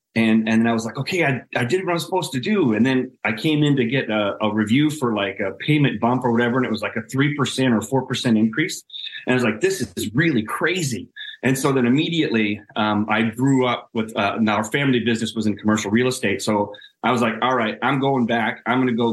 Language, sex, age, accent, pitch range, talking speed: English, male, 30-49, American, 110-150 Hz, 255 wpm